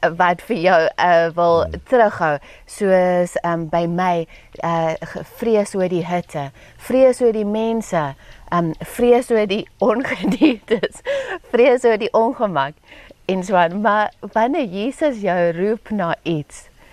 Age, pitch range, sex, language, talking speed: 30-49, 170-220 Hz, female, English, 130 wpm